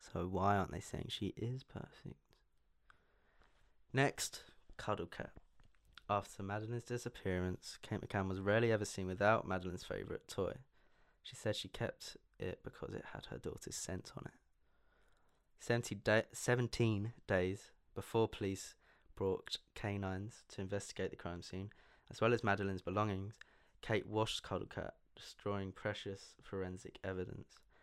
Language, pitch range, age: English, 95-105 Hz, 20-39